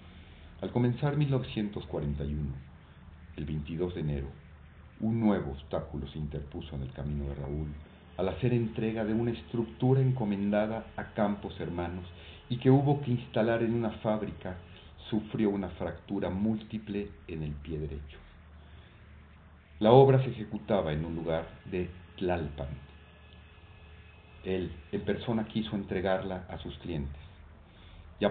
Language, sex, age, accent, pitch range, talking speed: Spanish, male, 40-59, Mexican, 80-105 Hz, 130 wpm